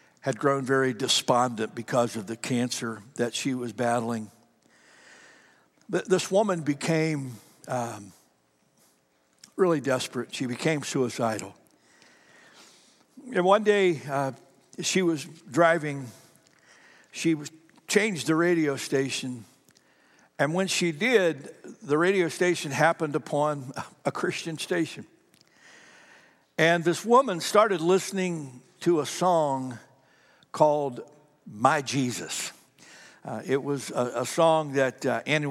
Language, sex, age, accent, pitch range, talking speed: English, male, 60-79, American, 125-170 Hz, 110 wpm